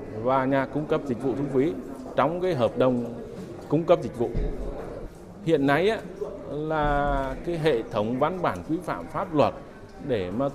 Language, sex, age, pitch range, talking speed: Vietnamese, male, 20-39, 125-160 Hz, 170 wpm